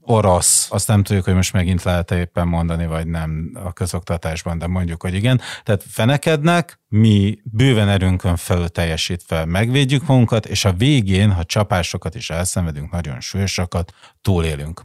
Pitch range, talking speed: 85-110 Hz, 145 wpm